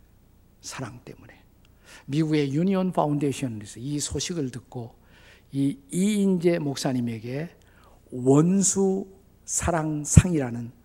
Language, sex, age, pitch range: Korean, male, 50-69, 100-150 Hz